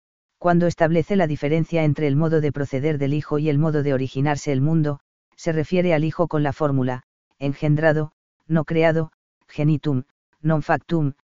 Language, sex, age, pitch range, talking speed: Spanish, female, 40-59, 145-170 Hz, 165 wpm